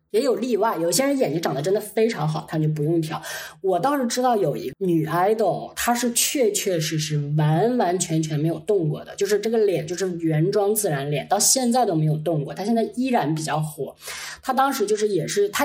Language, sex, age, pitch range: Chinese, female, 20-39, 160-230 Hz